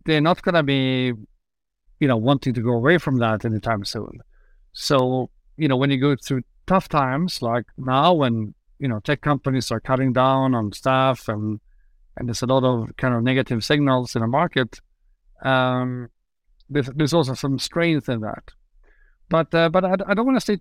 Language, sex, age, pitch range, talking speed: English, male, 50-69, 125-160 Hz, 190 wpm